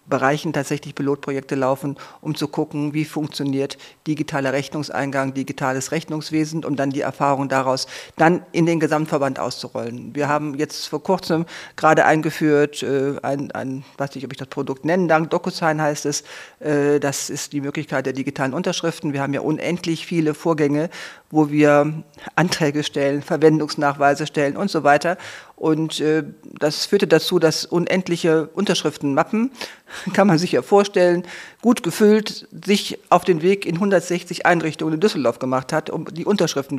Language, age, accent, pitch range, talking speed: German, 50-69, German, 140-165 Hz, 160 wpm